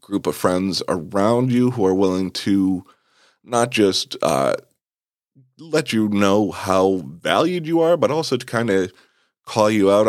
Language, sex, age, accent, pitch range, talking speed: English, male, 30-49, American, 95-110 Hz, 160 wpm